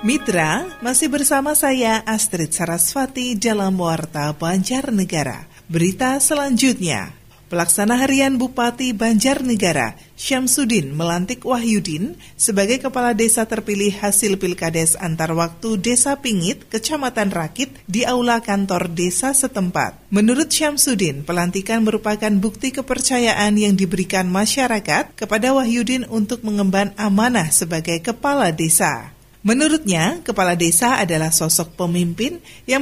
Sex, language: female, Indonesian